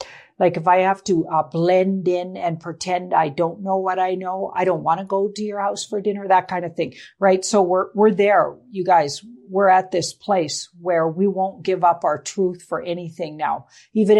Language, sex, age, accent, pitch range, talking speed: English, female, 50-69, American, 165-195 Hz, 220 wpm